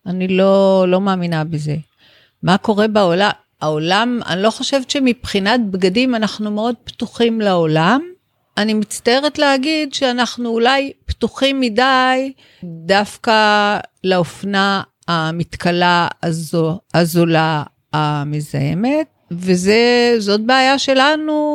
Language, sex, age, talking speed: Hebrew, female, 50-69, 95 wpm